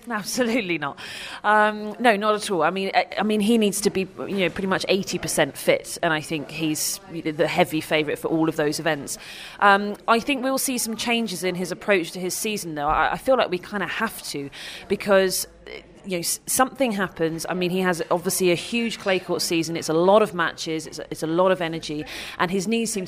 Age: 30-49